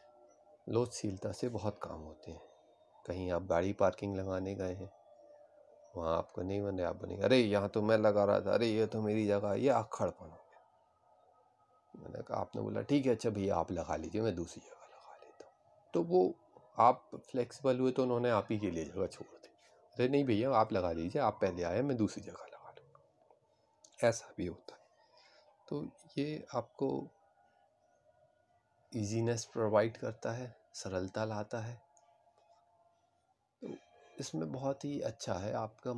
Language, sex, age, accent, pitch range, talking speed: Hindi, male, 30-49, native, 95-120 Hz, 170 wpm